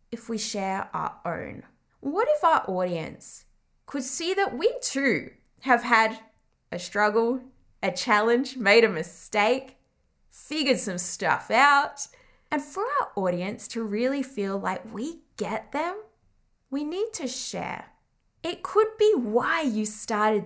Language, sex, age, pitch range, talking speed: English, female, 10-29, 200-285 Hz, 140 wpm